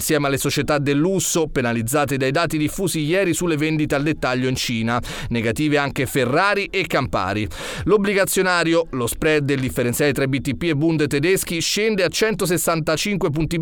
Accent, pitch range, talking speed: native, 135-180 Hz, 155 wpm